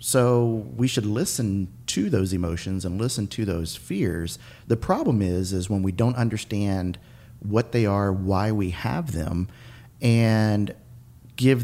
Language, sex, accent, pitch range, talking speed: English, male, American, 95-120 Hz, 150 wpm